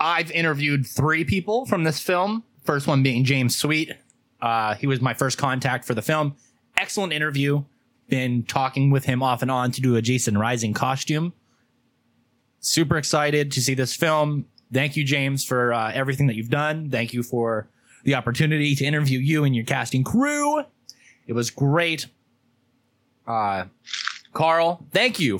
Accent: American